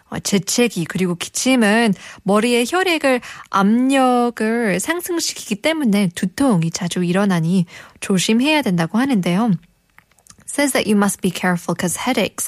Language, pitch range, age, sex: Korean, 180-240 Hz, 20-39, female